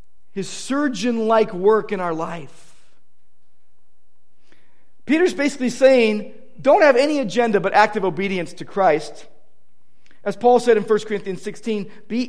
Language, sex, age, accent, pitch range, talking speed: English, male, 40-59, American, 165-255 Hz, 130 wpm